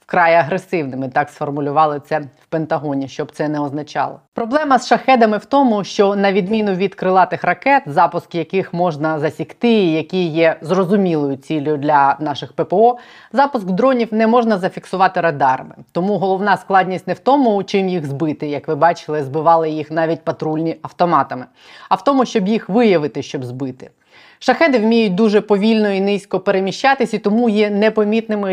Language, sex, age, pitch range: Ukrainian, female, 20-39, 160-205 Hz